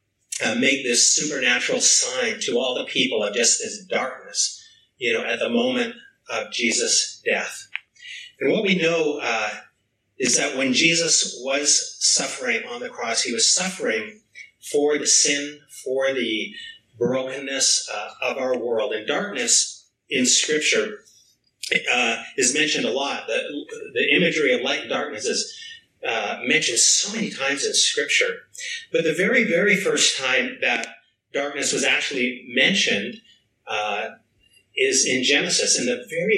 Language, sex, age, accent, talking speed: English, male, 30-49, American, 145 wpm